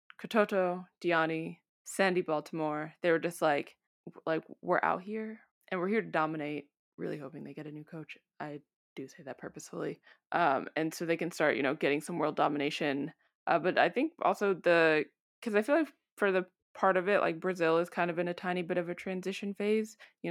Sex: female